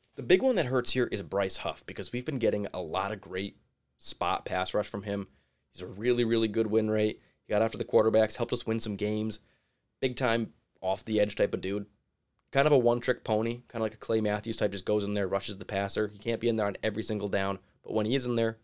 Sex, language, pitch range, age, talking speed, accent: male, English, 100-115 Hz, 20-39, 260 wpm, American